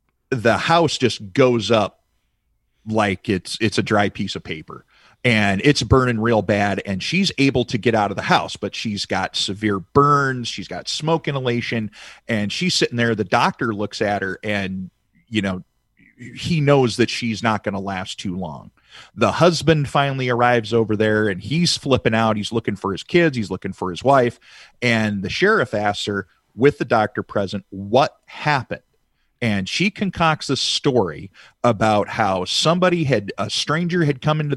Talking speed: 180 wpm